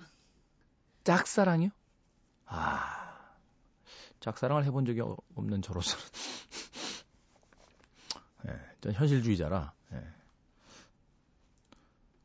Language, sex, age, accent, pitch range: Korean, male, 40-59, native, 100-140 Hz